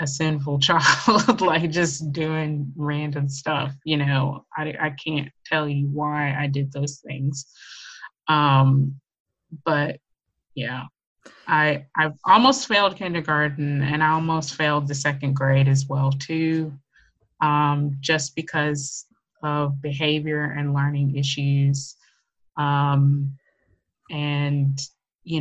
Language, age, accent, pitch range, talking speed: English, 20-39, American, 140-155 Hz, 115 wpm